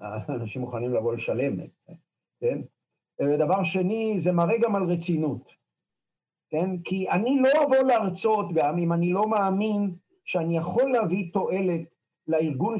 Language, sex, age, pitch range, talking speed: Hebrew, male, 50-69, 160-215 Hz, 130 wpm